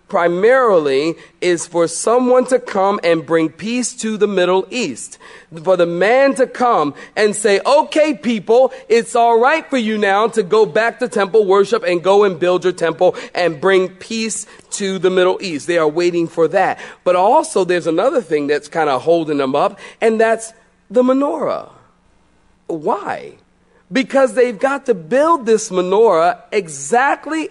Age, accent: 40-59, American